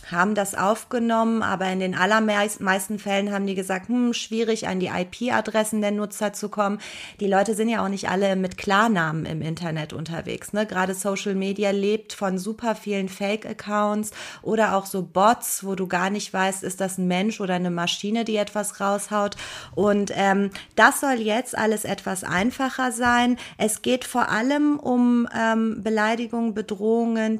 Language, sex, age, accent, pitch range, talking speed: German, female, 30-49, German, 185-225 Hz, 170 wpm